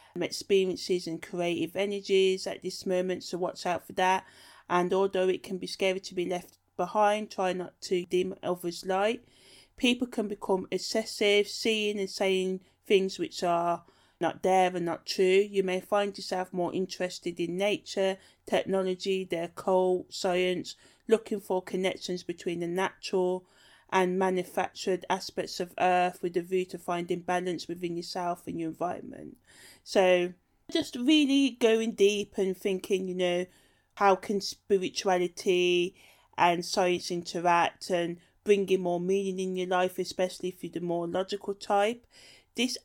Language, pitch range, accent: English, 180-200 Hz, British